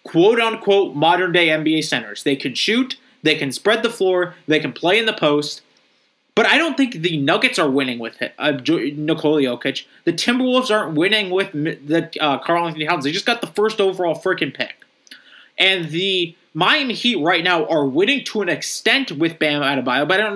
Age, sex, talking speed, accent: 20-39, male, 195 wpm, American